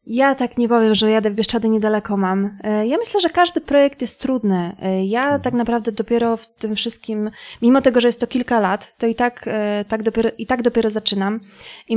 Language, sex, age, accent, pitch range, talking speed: Polish, female, 20-39, native, 205-240 Hz, 205 wpm